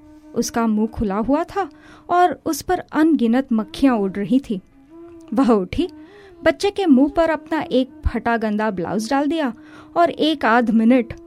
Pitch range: 225-335 Hz